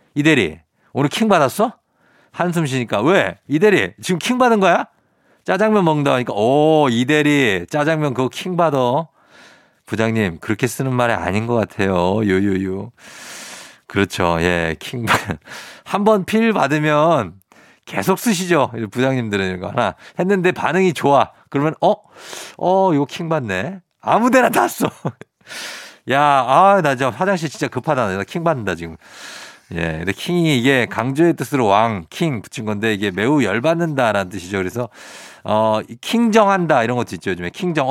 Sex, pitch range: male, 105-160 Hz